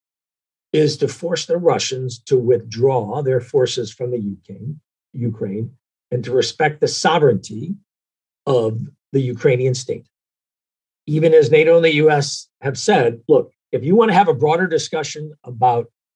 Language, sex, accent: English, male, American